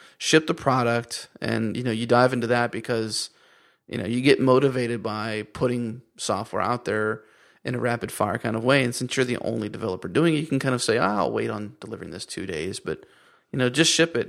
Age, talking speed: 30-49, 225 wpm